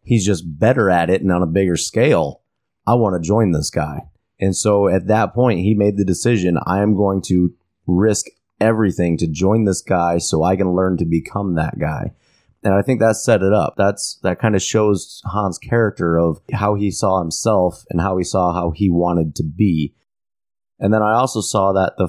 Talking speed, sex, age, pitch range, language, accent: 210 wpm, male, 30-49, 90-110 Hz, English, American